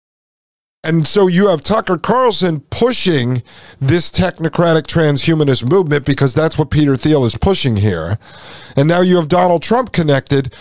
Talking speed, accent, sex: 145 wpm, American, male